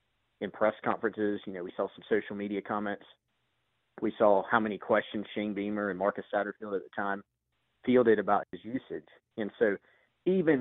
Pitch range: 105-130 Hz